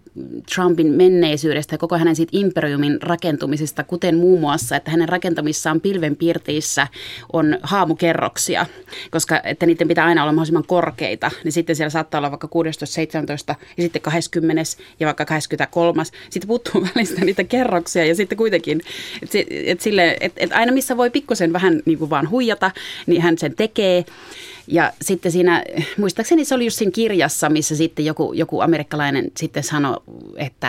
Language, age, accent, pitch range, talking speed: Finnish, 30-49, native, 150-175 Hz, 155 wpm